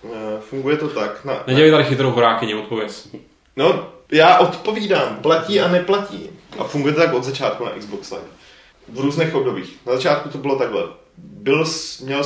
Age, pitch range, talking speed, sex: 20-39, 100-135 Hz, 145 wpm, male